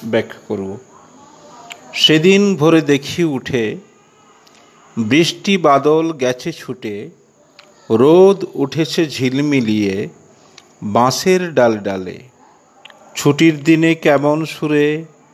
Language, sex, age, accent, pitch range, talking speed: Bengali, male, 50-69, native, 135-160 Hz, 80 wpm